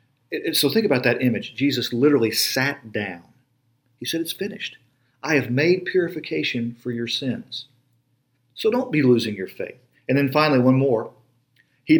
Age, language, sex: 40-59, English, male